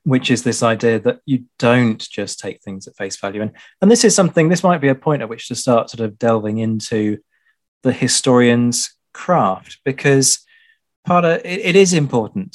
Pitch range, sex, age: 110-145 Hz, male, 30-49